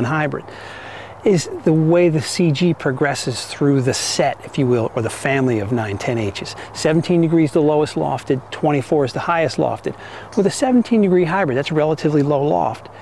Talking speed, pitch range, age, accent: 175 wpm, 130-175 Hz, 40-59, American